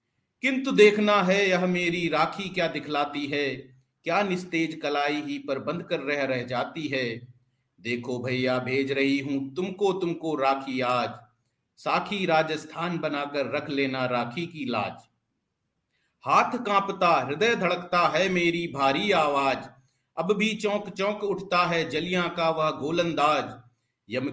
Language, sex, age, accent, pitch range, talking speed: Hindi, male, 50-69, native, 135-175 Hz, 140 wpm